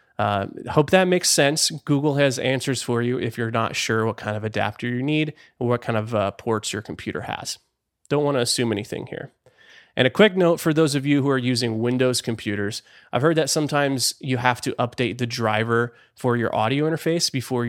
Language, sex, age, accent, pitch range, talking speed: English, male, 30-49, American, 115-140 Hz, 210 wpm